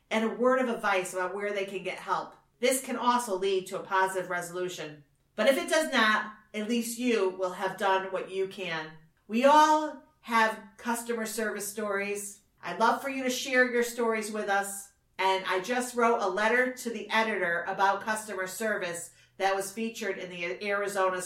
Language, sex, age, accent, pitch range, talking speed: English, female, 40-59, American, 190-235 Hz, 190 wpm